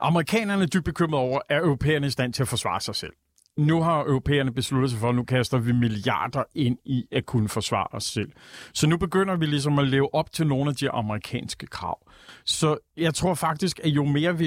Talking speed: 230 wpm